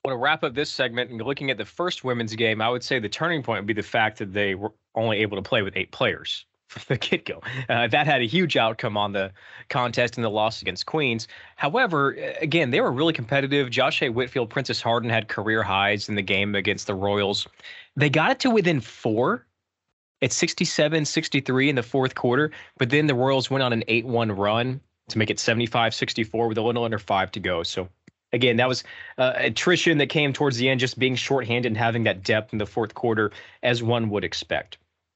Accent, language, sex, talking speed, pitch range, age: American, English, male, 225 wpm, 110-150 Hz, 20-39